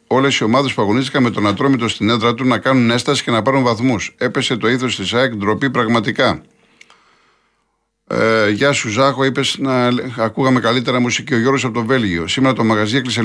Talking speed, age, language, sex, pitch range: 190 wpm, 50-69, Greek, male, 110-140 Hz